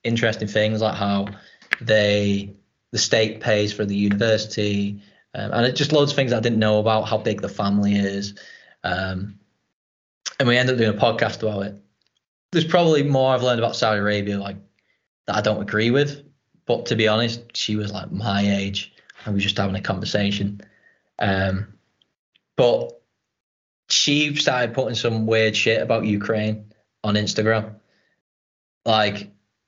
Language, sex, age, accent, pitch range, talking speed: English, male, 20-39, British, 100-115 Hz, 160 wpm